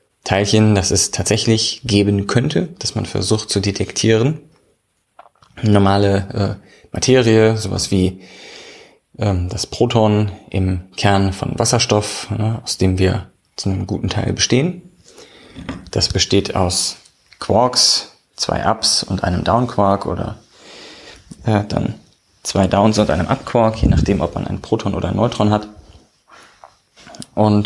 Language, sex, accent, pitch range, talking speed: German, male, German, 95-115 Hz, 130 wpm